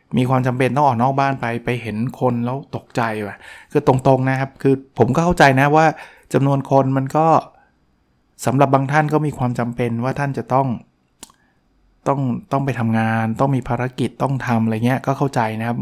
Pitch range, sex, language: 115-135 Hz, male, Thai